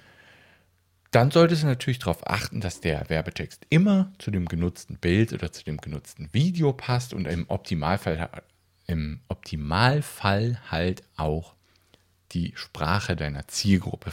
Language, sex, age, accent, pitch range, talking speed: German, male, 50-69, German, 90-135 Hz, 125 wpm